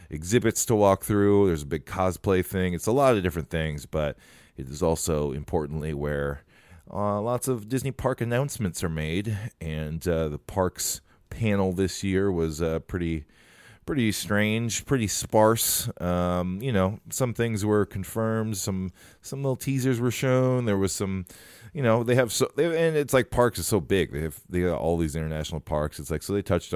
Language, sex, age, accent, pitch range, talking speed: English, male, 30-49, American, 80-105 Hz, 190 wpm